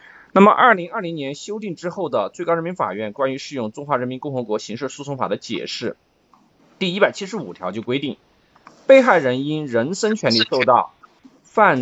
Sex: male